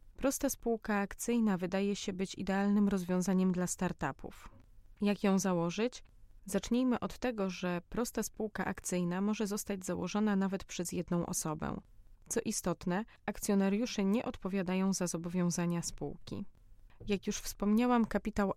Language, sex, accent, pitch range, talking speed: Polish, female, native, 180-210 Hz, 125 wpm